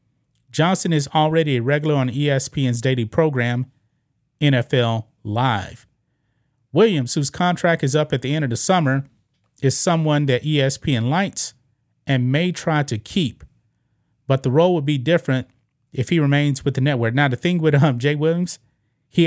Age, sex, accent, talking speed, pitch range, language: 30-49, male, American, 160 wpm, 125-155 Hz, English